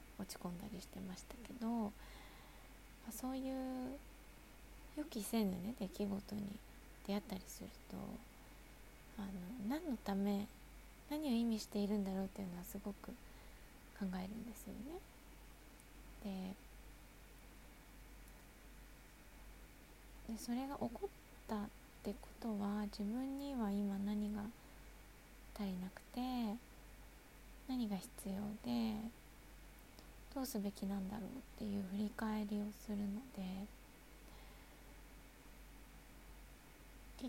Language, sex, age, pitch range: Japanese, female, 20-39, 200-245 Hz